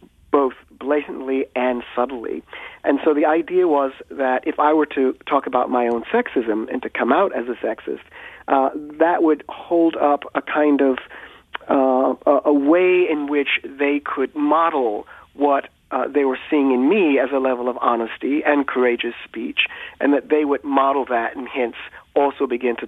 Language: English